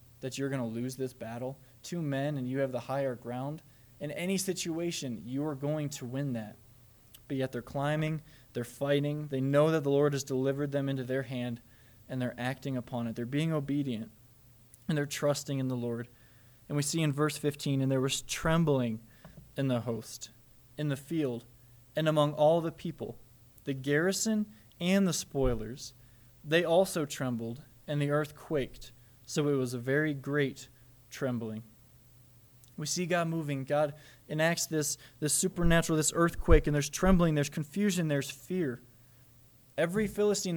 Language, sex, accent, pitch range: English, male, American, 125-155 Hz